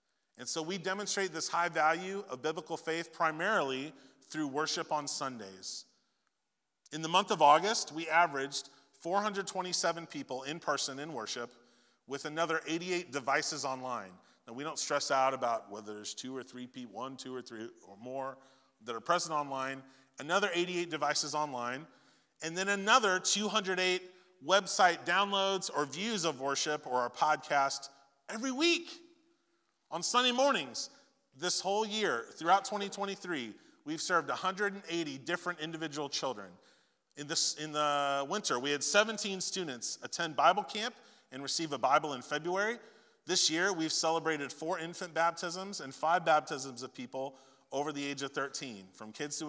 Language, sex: English, male